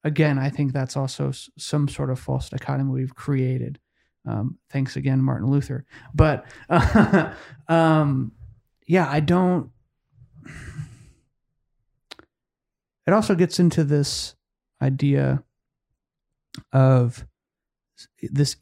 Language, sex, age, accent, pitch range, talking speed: English, male, 30-49, American, 130-150 Hz, 100 wpm